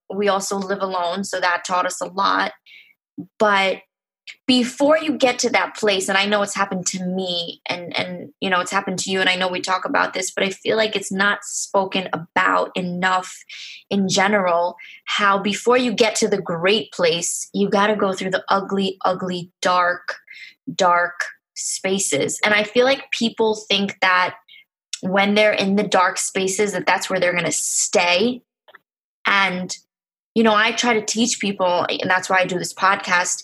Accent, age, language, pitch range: American, 20-39, English, 185-225 Hz